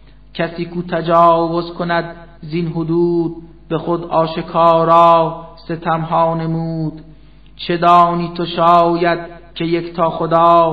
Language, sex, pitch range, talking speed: Persian, male, 160-170 Hz, 100 wpm